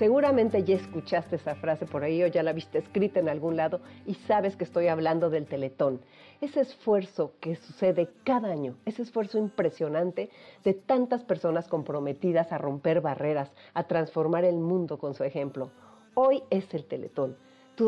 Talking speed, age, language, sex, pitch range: 170 wpm, 40-59, Spanish, female, 150-210 Hz